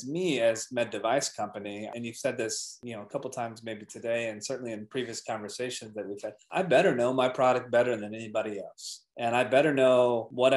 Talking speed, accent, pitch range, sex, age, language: 215 wpm, American, 115-135 Hz, male, 20-39, English